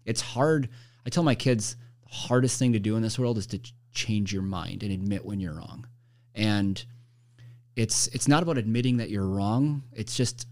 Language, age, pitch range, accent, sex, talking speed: English, 30-49, 100-120 Hz, American, male, 200 wpm